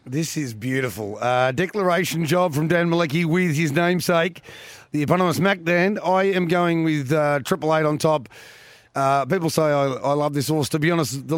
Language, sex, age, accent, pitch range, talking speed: English, male, 30-49, Australian, 140-165 Hz, 190 wpm